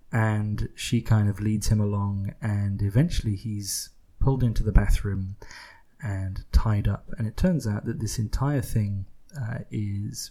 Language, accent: English, British